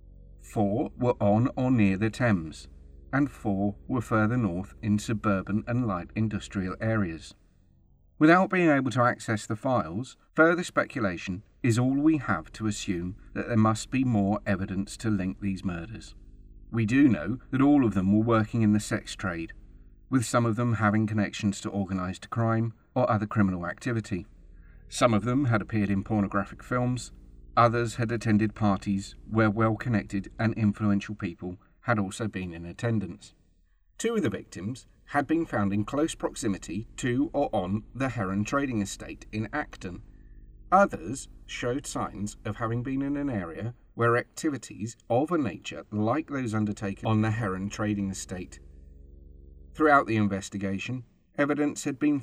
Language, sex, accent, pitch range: English, male, British, 95-120 Hz